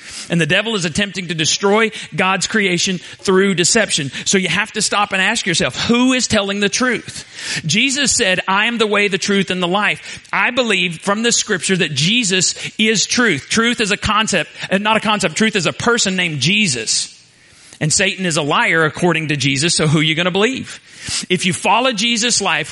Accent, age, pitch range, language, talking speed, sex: American, 40-59, 155-200 Hz, English, 200 wpm, male